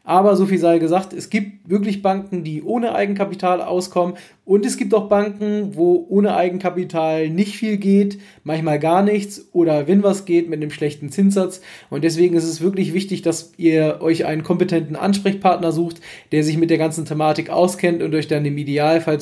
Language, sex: German, male